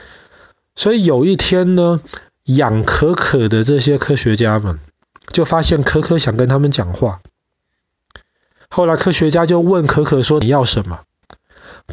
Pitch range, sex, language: 115-155 Hz, male, Chinese